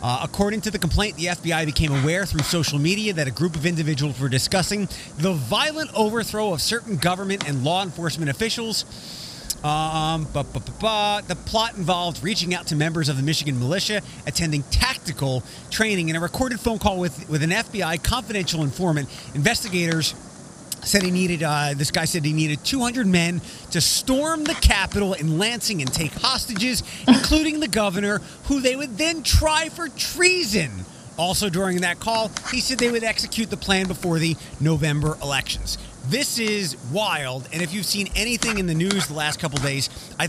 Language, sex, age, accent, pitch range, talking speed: English, male, 30-49, American, 150-210 Hz, 175 wpm